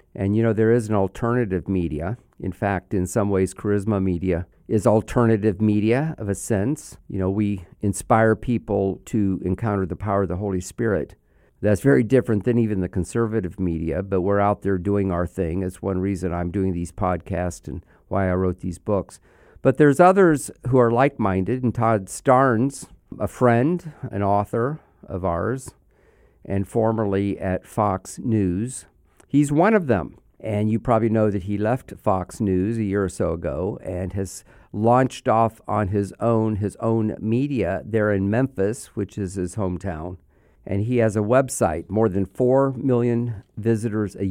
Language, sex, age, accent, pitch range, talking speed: English, male, 50-69, American, 95-115 Hz, 175 wpm